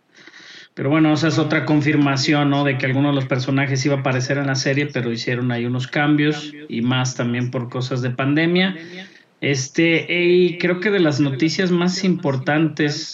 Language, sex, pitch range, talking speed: Spanish, male, 130-155 Hz, 185 wpm